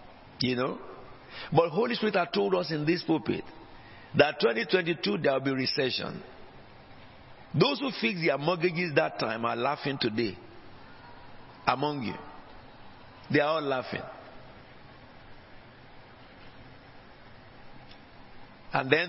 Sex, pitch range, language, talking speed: male, 120-155 Hz, English, 110 wpm